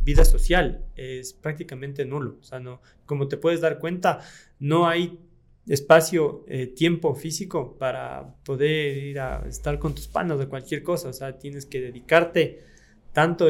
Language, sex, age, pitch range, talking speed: Spanish, male, 20-39, 125-150 Hz, 160 wpm